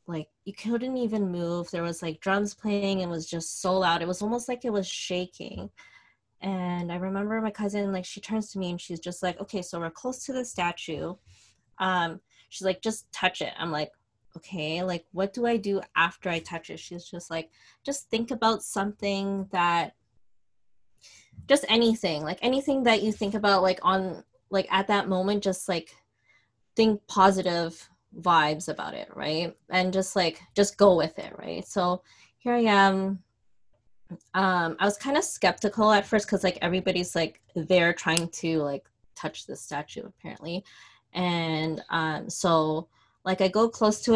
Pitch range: 170-205 Hz